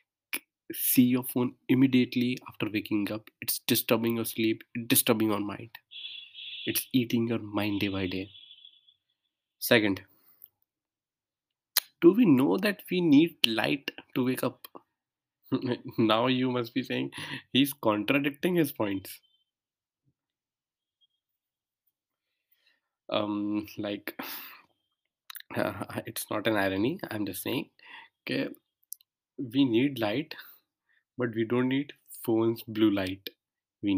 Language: Hindi